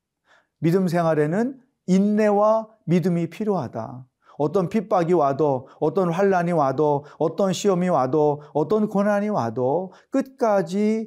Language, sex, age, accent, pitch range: Korean, male, 40-59, native, 165-215 Hz